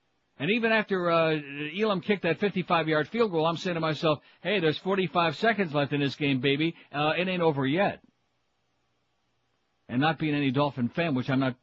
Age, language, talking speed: 60-79, English, 190 wpm